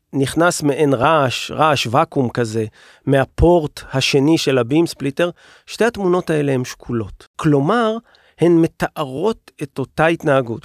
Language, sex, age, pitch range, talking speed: Hebrew, male, 40-59, 135-180 Hz, 125 wpm